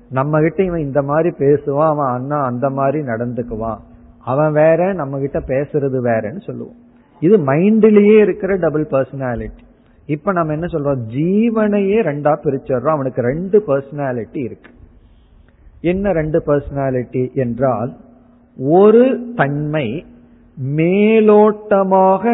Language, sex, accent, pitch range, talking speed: Tamil, male, native, 125-185 Hz, 100 wpm